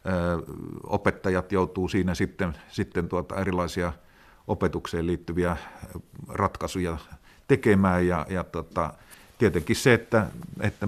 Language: Finnish